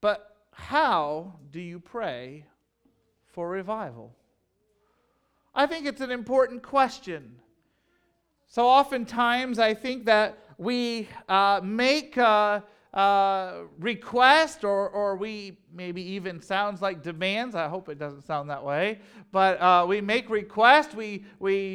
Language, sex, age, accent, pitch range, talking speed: English, male, 40-59, American, 180-240 Hz, 125 wpm